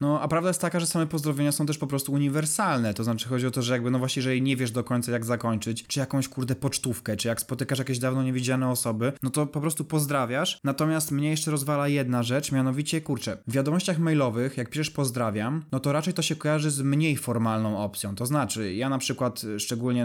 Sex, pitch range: male, 120-160 Hz